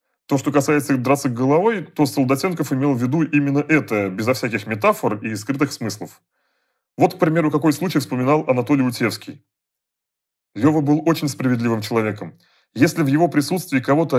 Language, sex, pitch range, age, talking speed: Russian, male, 125-160 Hz, 30-49, 150 wpm